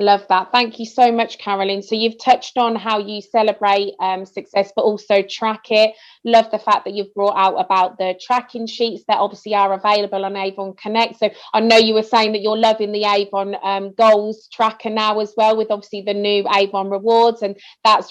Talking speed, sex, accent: 210 wpm, female, British